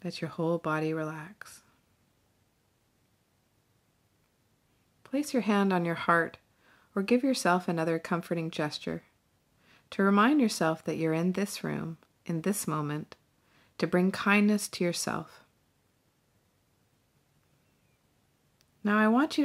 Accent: American